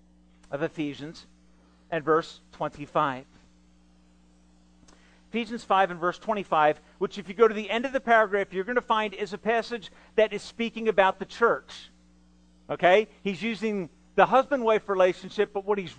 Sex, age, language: male, 40-59, English